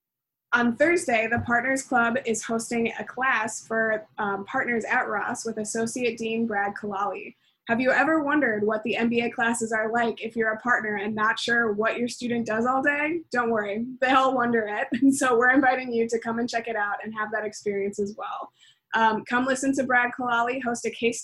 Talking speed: 205 wpm